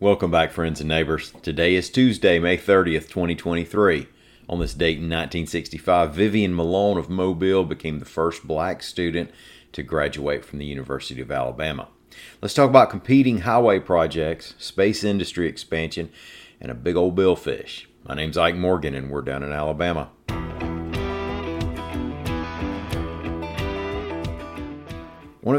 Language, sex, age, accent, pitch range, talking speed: English, male, 40-59, American, 75-90 Hz, 130 wpm